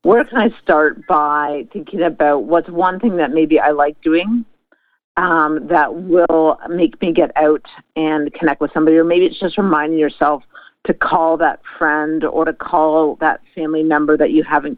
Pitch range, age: 155-185 Hz, 50-69